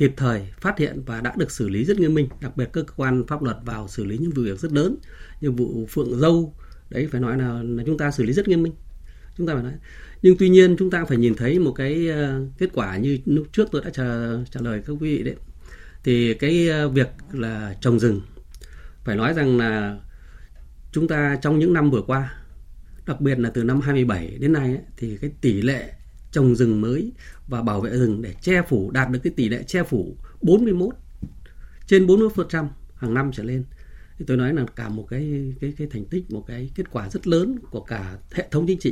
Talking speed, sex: 225 wpm, male